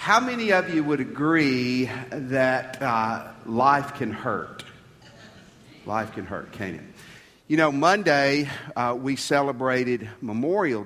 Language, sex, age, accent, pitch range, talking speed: English, male, 50-69, American, 115-145 Hz, 125 wpm